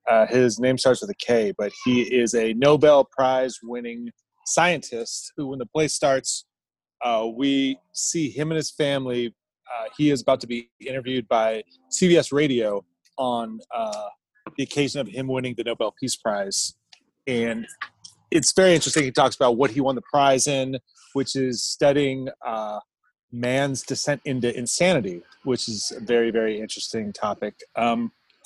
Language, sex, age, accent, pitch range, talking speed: English, male, 30-49, American, 120-145 Hz, 165 wpm